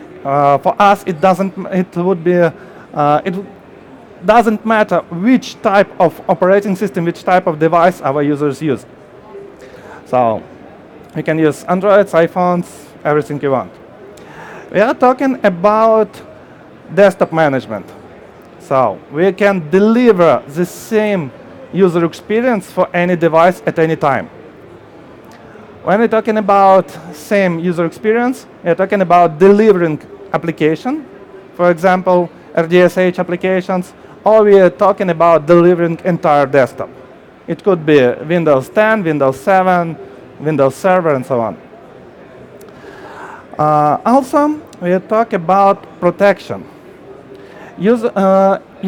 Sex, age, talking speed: male, 30-49, 120 wpm